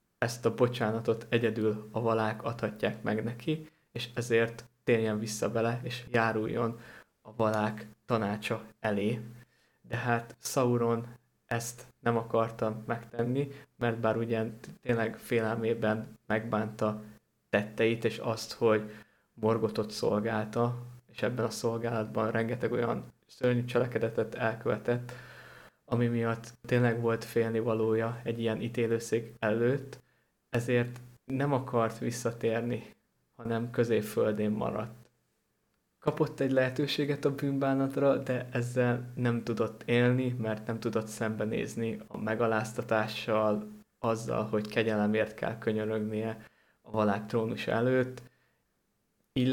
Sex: male